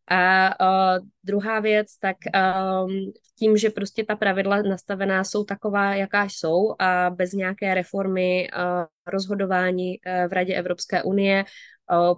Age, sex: 20-39, female